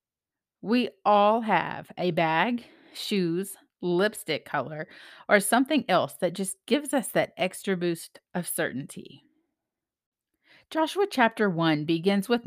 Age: 40-59